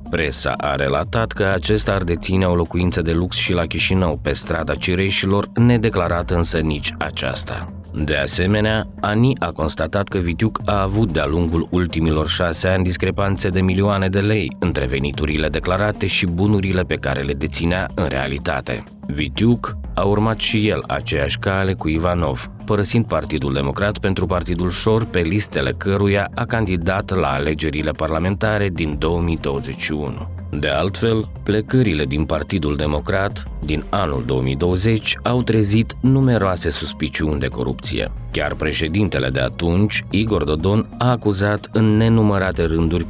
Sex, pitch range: male, 80-105 Hz